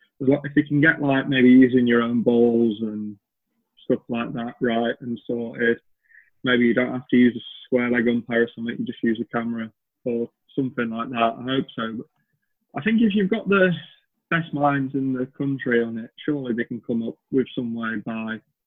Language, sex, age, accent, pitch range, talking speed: English, male, 20-39, British, 115-135 Hz, 205 wpm